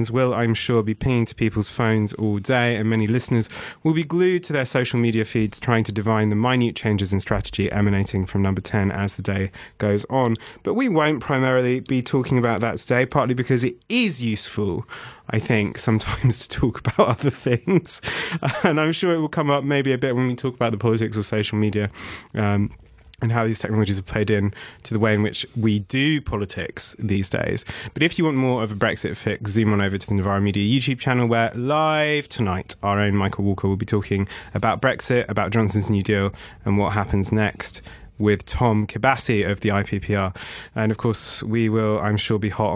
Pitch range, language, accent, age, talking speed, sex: 105-125 Hz, English, British, 30-49, 210 wpm, male